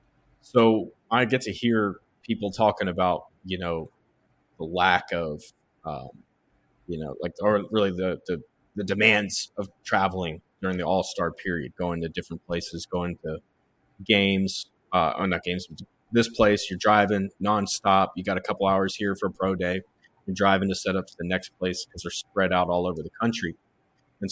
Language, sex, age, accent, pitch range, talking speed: English, male, 30-49, American, 90-105 Hz, 185 wpm